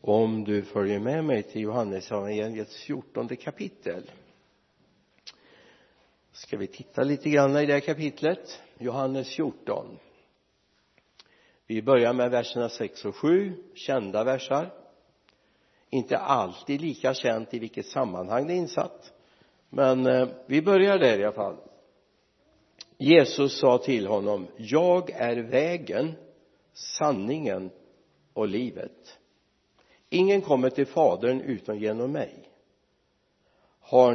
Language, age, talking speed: Swedish, 60-79, 110 wpm